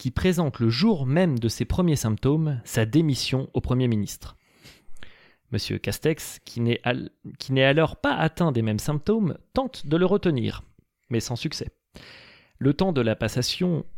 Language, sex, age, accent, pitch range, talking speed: French, male, 30-49, French, 115-165 Hz, 165 wpm